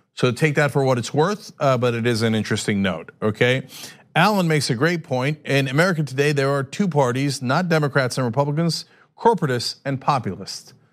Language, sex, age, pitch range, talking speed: English, male, 40-59, 120-155 Hz, 180 wpm